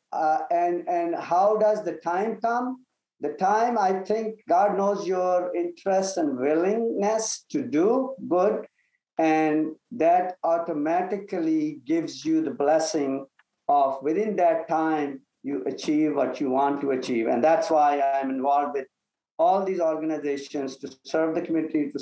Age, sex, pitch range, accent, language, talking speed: 50-69, male, 135-185 Hz, Indian, English, 145 wpm